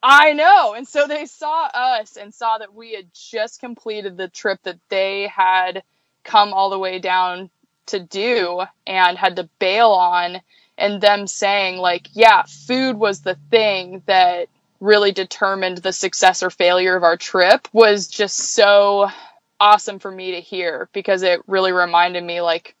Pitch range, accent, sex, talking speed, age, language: 180-205 Hz, American, female, 170 wpm, 20-39, English